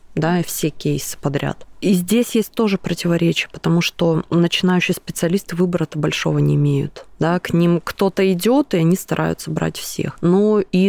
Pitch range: 150-185 Hz